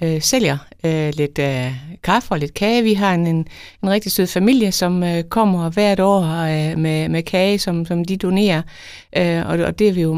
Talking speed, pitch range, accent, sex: 170 wpm, 145-185 Hz, native, female